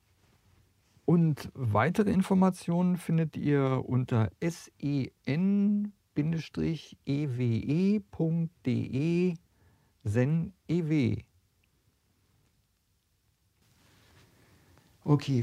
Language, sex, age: German, male, 50-69